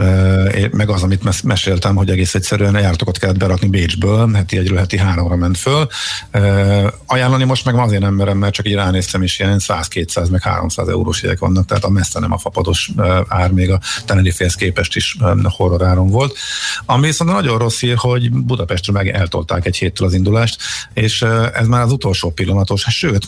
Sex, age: male, 50-69